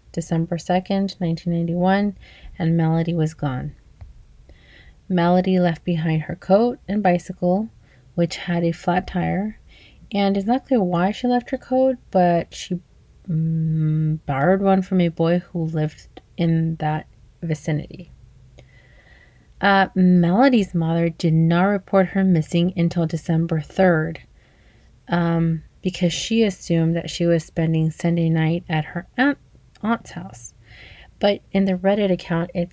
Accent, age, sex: American, 30-49, female